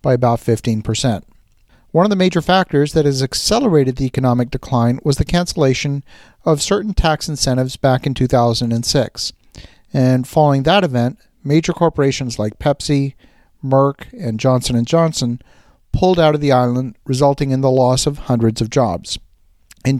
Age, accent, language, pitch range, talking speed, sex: 50-69, American, English, 120-145 Hz, 155 wpm, male